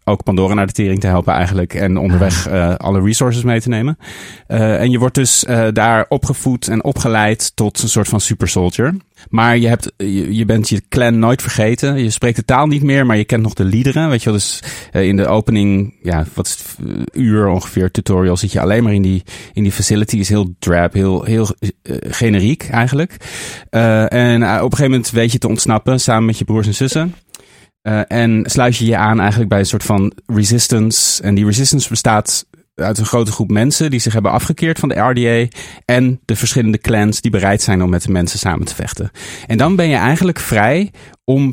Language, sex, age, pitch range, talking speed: Dutch, male, 30-49, 105-125 Hz, 220 wpm